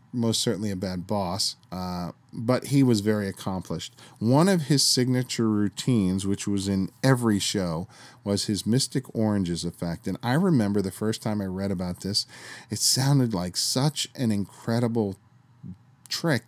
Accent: American